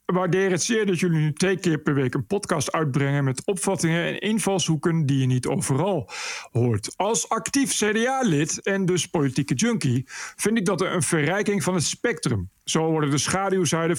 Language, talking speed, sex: Dutch, 175 wpm, male